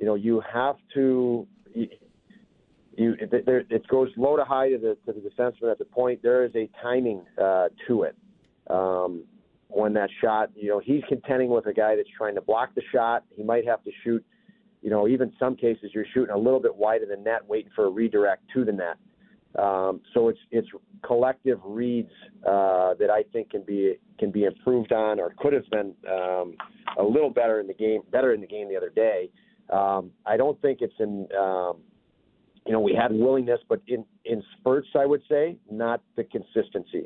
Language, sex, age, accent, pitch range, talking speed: English, male, 40-59, American, 105-140 Hz, 205 wpm